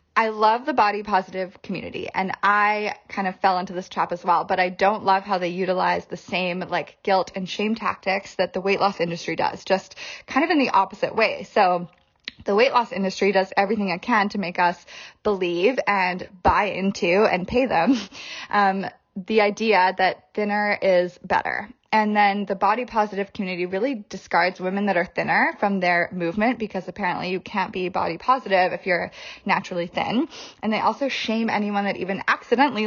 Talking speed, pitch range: 190 wpm, 185-220 Hz